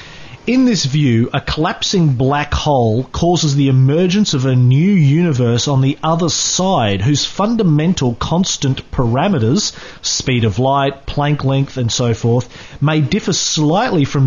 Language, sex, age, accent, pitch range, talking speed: English, male, 30-49, Australian, 125-160 Hz, 145 wpm